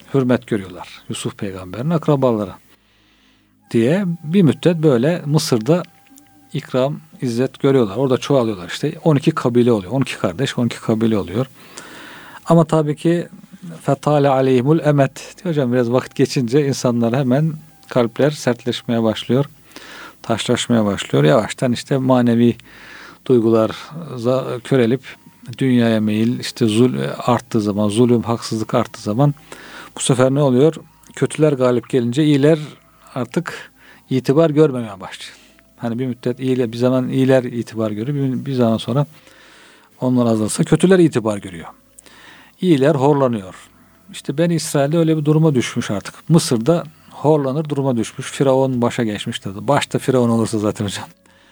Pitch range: 115-150 Hz